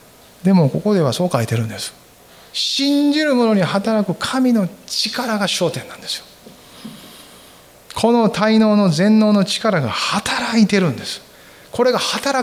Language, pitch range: Japanese, 140-220 Hz